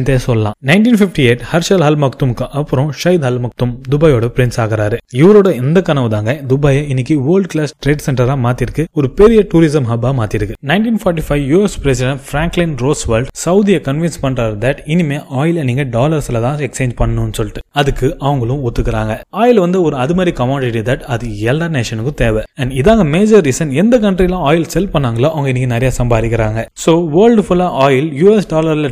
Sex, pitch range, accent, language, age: male, 120-170 Hz, native, Tamil, 20-39